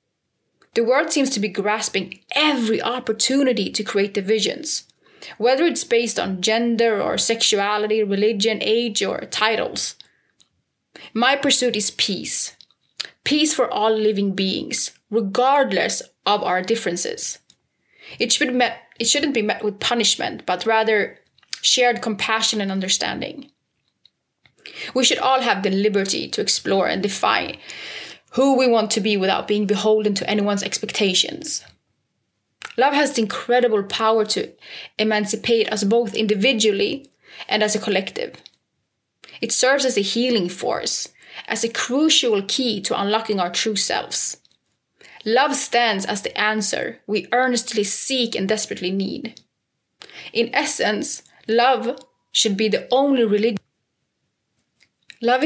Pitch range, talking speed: 210-250 Hz, 130 wpm